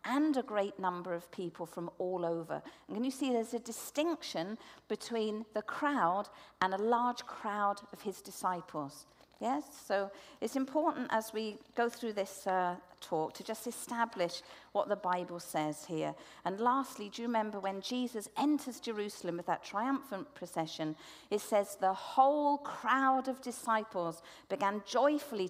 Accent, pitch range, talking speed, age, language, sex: British, 185-255 Hz, 160 wpm, 50-69, English, female